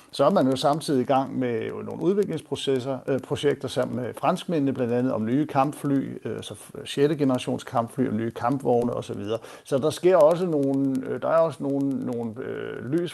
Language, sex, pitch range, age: Danish, male, 120-145 Hz, 60-79